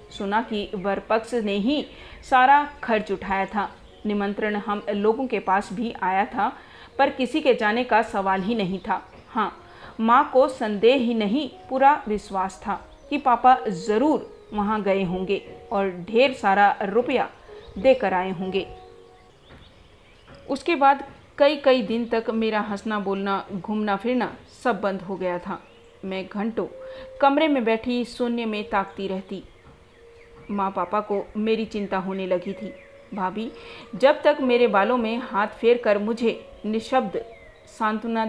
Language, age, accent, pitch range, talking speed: Hindi, 40-59, native, 200-255 Hz, 145 wpm